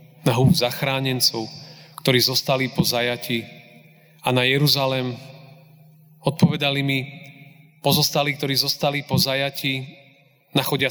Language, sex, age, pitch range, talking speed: Slovak, male, 30-49, 125-160 Hz, 95 wpm